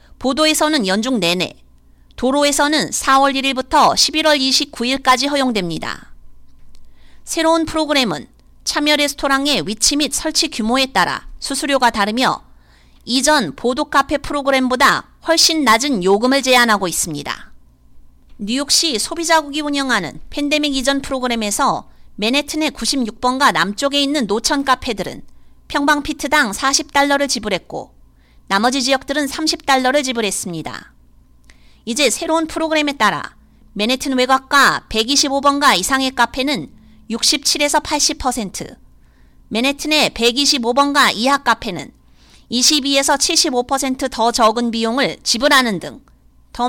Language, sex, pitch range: Korean, female, 215-290 Hz